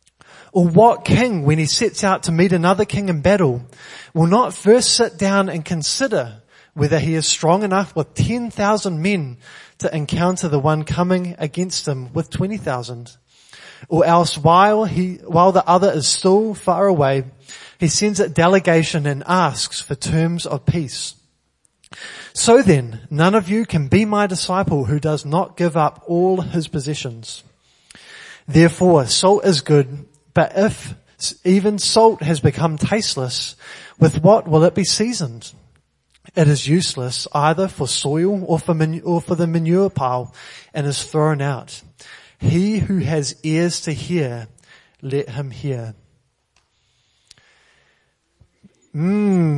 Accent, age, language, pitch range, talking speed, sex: Australian, 20-39, English, 145-190 Hz, 145 wpm, male